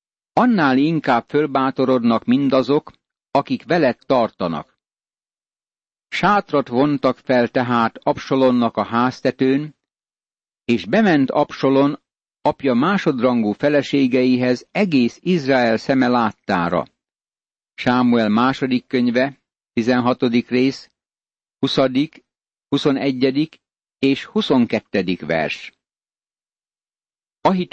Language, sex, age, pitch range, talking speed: Hungarian, male, 60-79, 120-145 Hz, 75 wpm